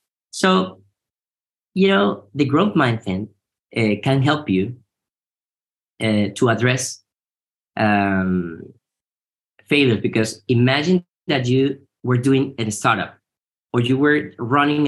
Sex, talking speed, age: male, 110 wpm, 20-39